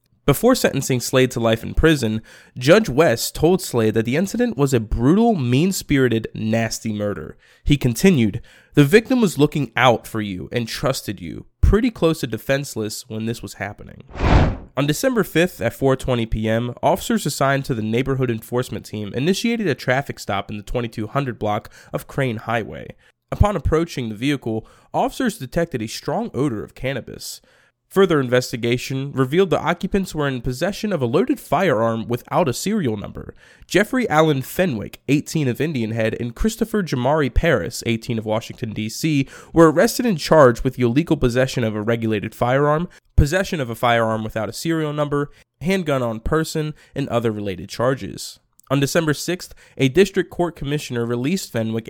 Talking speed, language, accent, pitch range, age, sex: 165 wpm, English, American, 115-155 Hz, 20-39, male